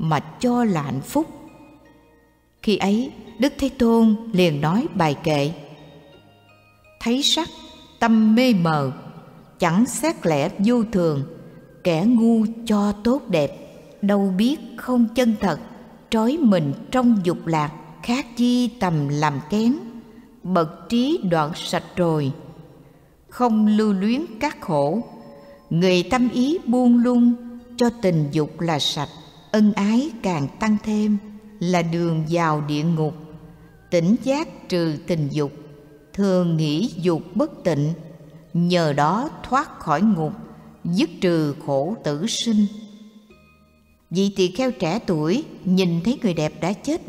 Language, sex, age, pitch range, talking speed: Vietnamese, female, 60-79, 160-230 Hz, 135 wpm